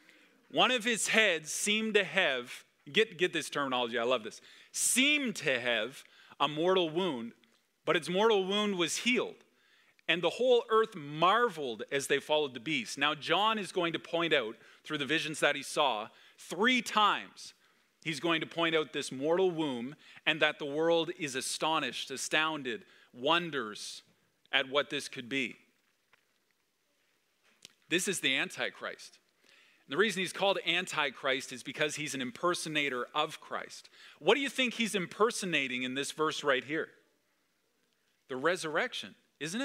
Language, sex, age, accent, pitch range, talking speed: English, male, 40-59, American, 150-200 Hz, 155 wpm